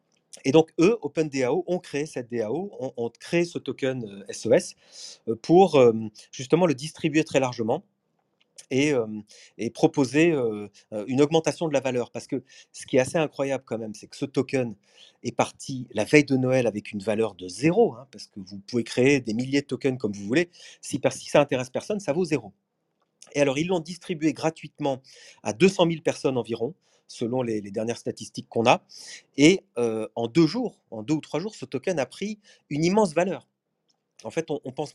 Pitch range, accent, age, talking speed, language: 125-170 Hz, French, 40-59, 200 wpm, French